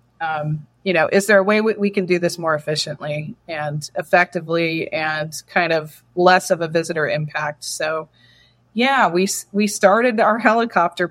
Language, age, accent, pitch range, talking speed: English, 30-49, American, 160-190 Hz, 165 wpm